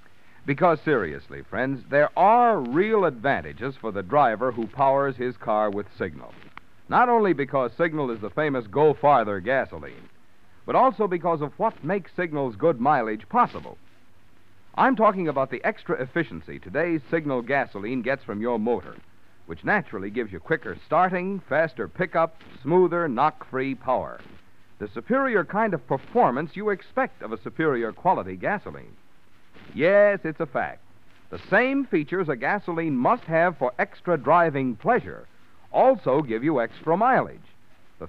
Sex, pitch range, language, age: male, 120-195 Hz, English, 60-79